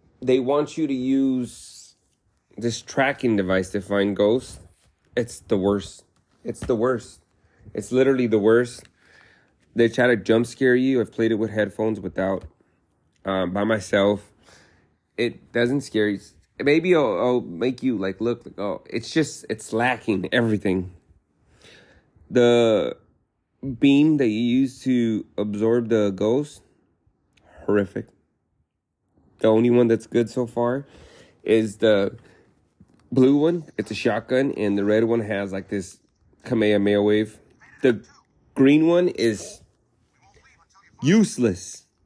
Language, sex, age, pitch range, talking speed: English, male, 30-49, 100-125 Hz, 125 wpm